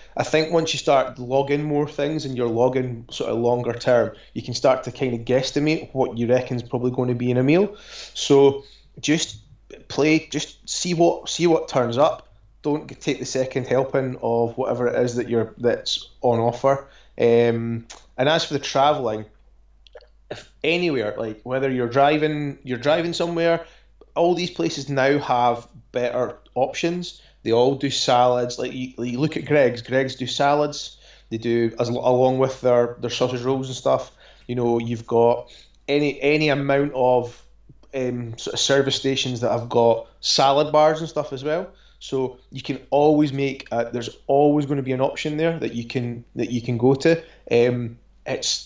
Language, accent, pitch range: English, British, 120-145 Hz